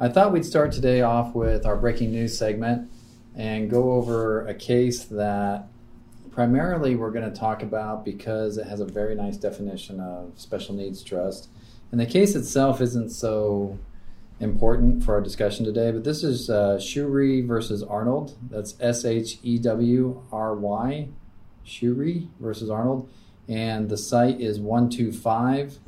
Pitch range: 105-120 Hz